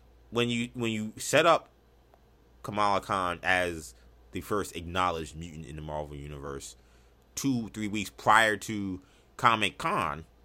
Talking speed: 130 wpm